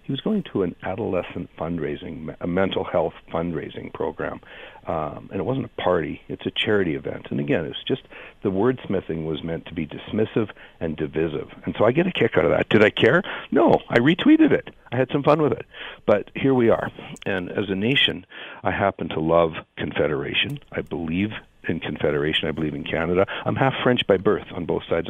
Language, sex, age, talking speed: English, male, 60-79, 205 wpm